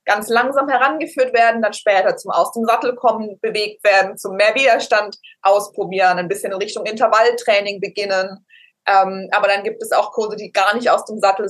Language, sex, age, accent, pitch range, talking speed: German, female, 20-39, German, 195-225 Hz, 165 wpm